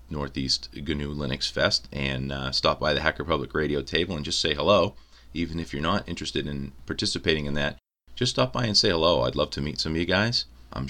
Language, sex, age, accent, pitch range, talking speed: English, male, 30-49, American, 65-75 Hz, 225 wpm